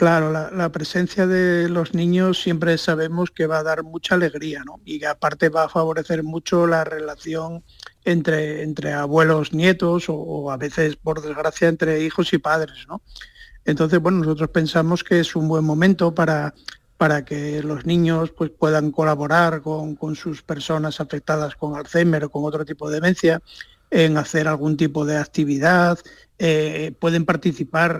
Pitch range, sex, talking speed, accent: 150-165 Hz, male, 170 wpm, Spanish